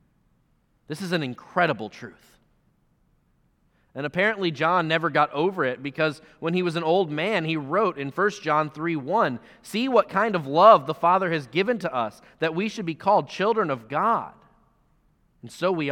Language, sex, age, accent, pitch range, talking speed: English, male, 30-49, American, 140-190 Hz, 180 wpm